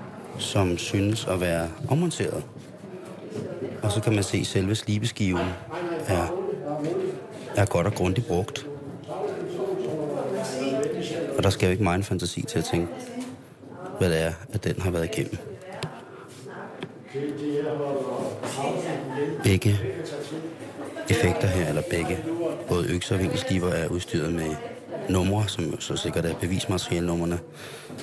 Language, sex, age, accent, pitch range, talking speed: Danish, male, 30-49, native, 95-135 Hz, 120 wpm